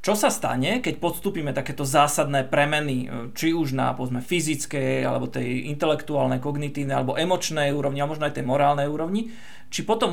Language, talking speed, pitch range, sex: Slovak, 165 wpm, 140-170 Hz, male